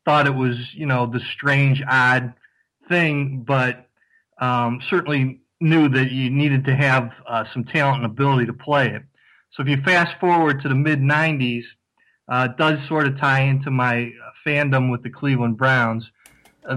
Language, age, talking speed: English, 40-59, 170 wpm